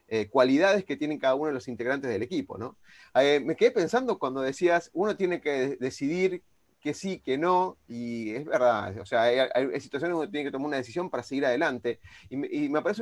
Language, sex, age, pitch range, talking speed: Spanish, male, 30-49, 125-175 Hz, 230 wpm